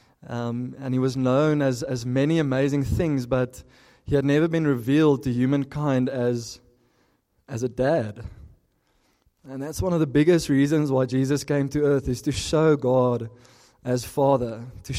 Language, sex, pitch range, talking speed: English, male, 125-145 Hz, 165 wpm